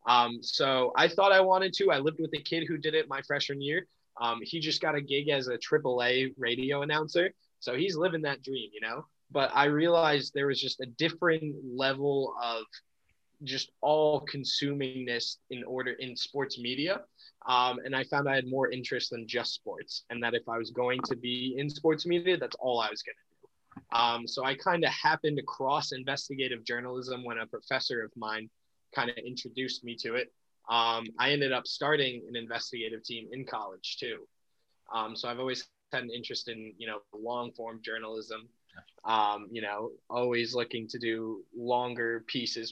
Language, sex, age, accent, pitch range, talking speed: English, male, 20-39, American, 115-145 Hz, 190 wpm